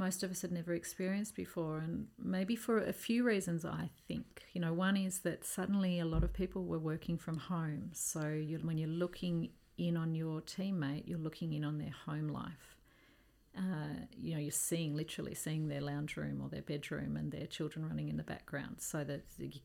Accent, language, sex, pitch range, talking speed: Australian, English, female, 155-190 Hz, 205 wpm